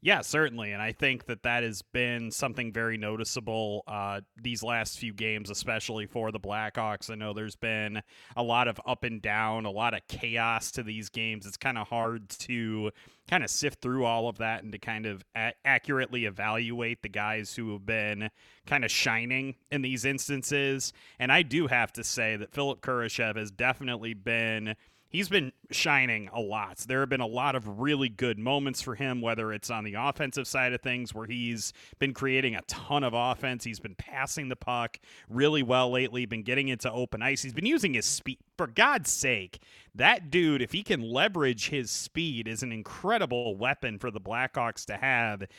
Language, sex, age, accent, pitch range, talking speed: English, male, 30-49, American, 110-135 Hz, 195 wpm